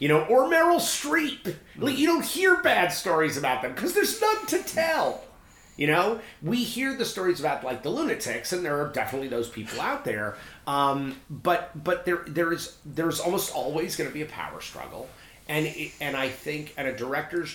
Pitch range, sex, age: 105-165 Hz, male, 30-49